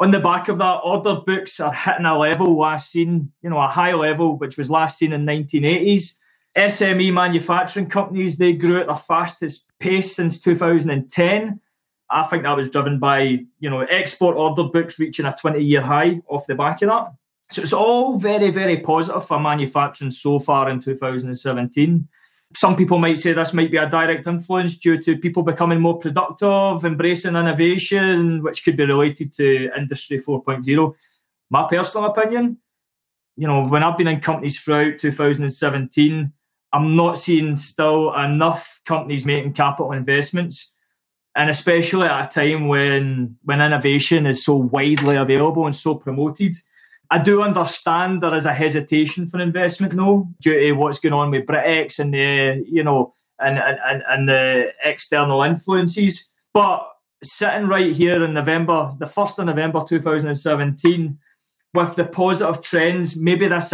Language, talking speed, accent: English, 165 wpm, British